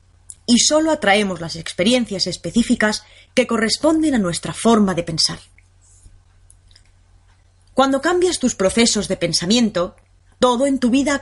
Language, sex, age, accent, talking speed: Spanish, female, 20-39, Spanish, 125 wpm